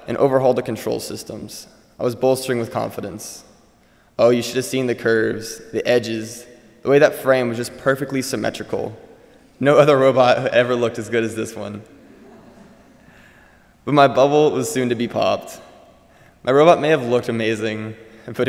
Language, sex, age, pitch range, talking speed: English, male, 20-39, 115-130 Hz, 170 wpm